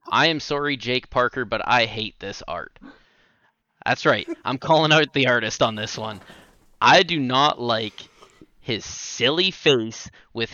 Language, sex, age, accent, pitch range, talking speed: English, male, 20-39, American, 115-160 Hz, 160 wpm